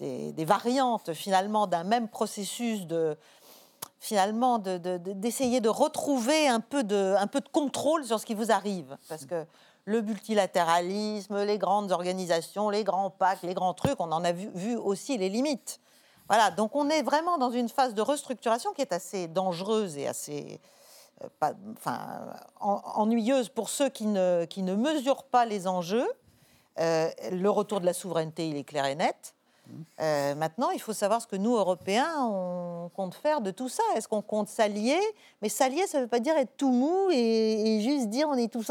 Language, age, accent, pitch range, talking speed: French, 50-69, French, 185-265 Hz, 195 wpm